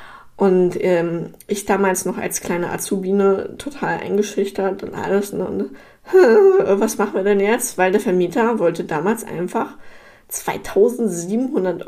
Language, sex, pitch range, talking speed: German, female, 175-220 Hz, 125 wpm